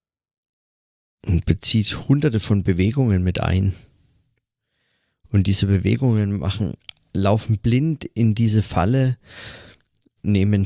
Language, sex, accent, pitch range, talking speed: German, male, German, 95-120 Hz, 95 wpm